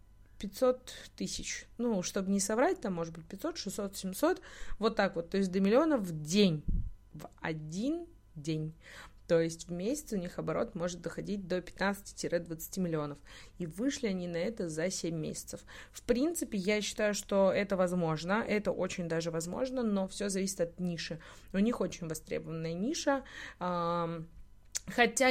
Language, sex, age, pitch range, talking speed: Russian, female, 20-39, 180-235 Hz, 155 wpm